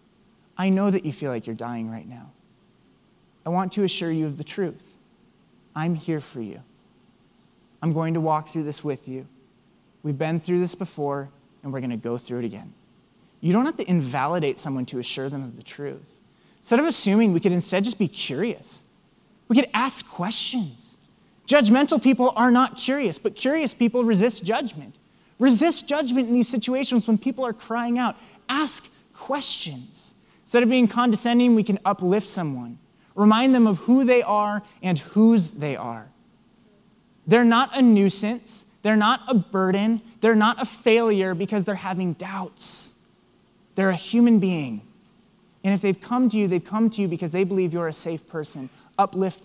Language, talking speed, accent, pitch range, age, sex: English, 175 wpm, American, 160-225 Hz, 20-39, male